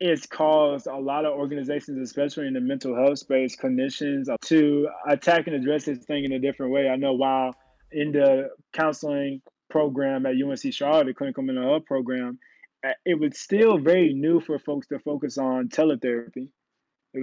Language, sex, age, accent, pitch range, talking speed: English, male, 20-39, American, 130-155 Hz, 175 wpm